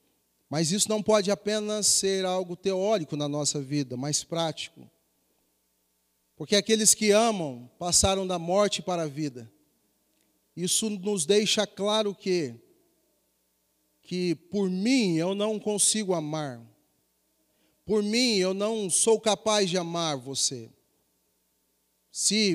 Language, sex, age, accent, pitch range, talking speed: Portuguese, male, 40-59, Brazilian, 145-215 Hz, 120 wpm